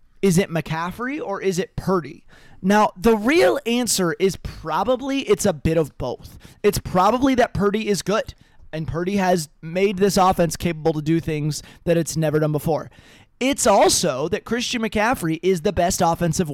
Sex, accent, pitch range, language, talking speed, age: male, American, 160-220 Hz, English, 175 wpm, 20-39